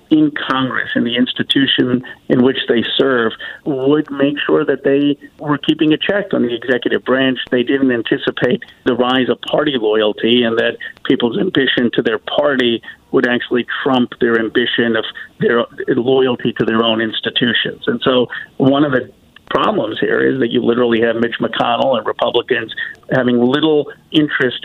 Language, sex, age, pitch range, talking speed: English, male, 50-69, 120-150 Hz, 165 wpm